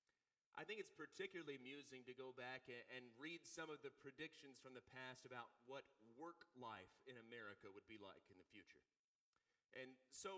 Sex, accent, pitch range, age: male, American, 130-200 Hz, 30-49